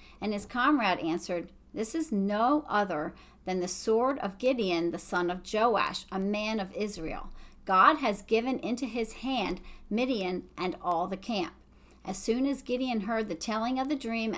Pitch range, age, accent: 190-240 Hz, 40-59, American